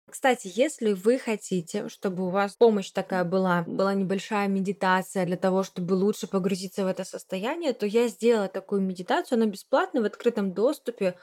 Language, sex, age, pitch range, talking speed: Russian, female, 20-39, 190-230 Hz, 165 wpm